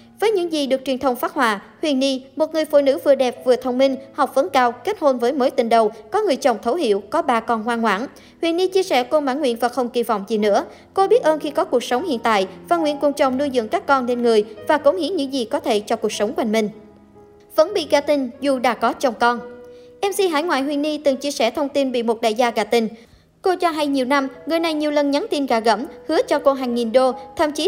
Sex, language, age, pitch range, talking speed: male, Vietnamese, 20-39, 240-310 Hz, 280 wpm